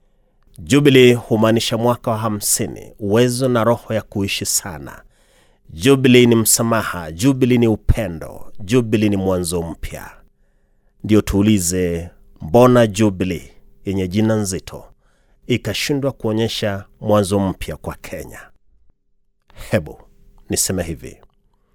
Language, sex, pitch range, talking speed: Swahili, male, 100-125 Hz, 100 wpm